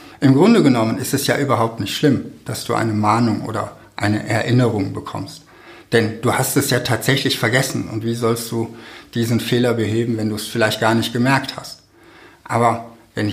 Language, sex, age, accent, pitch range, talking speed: German, male, 60-79, German, 110-135 Hz, 185 wpm